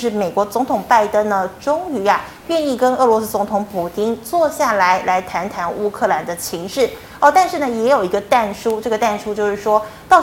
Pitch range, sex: 195-255 Hz, female